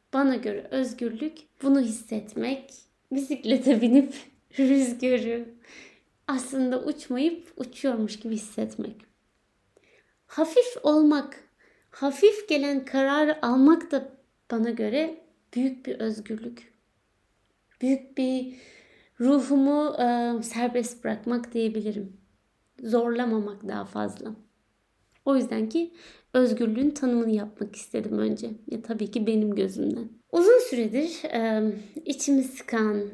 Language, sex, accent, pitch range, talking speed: Turkish, female, native, 220-275 Hz, 95 wpm